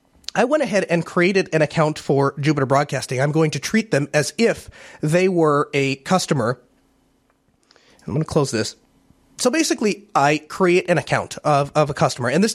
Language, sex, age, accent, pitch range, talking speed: English, male, 30-49, American, 145-190 Hz, 180 wpm